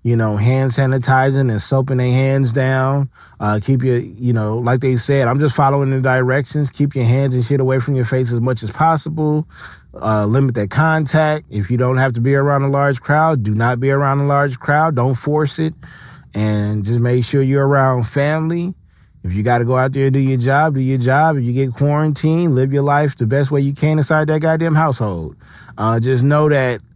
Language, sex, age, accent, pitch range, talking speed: English, male, 20-39, American, 120-145 Hz, 225 wpm